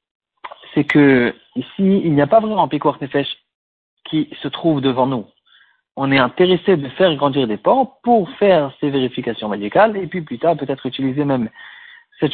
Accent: French